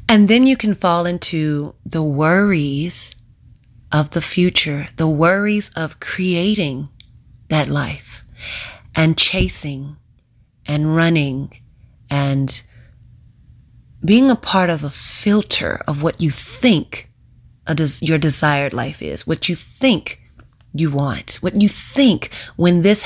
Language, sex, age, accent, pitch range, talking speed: English, female, 30-49, American, 135-175 Hz, 120 wpm